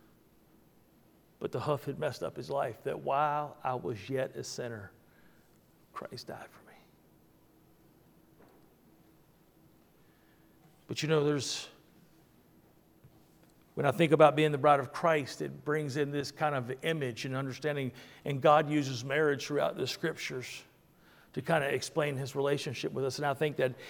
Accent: American